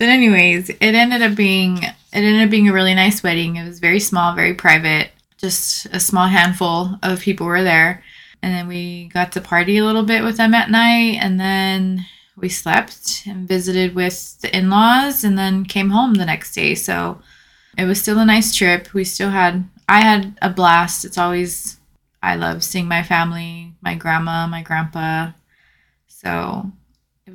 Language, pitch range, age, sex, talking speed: English, 175-195 Hz, 20-39, female, 185 wpm